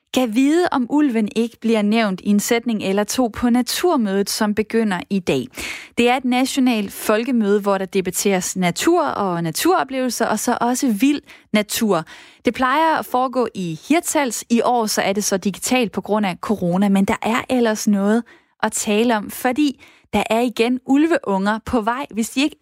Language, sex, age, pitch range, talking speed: Danish, female, 20-39, 210-270 Hz, 185 wpm